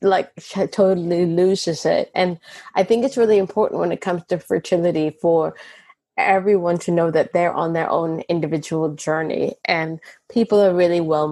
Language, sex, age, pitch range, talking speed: English, female, 20-39, 160-185 Hz, 165 wpm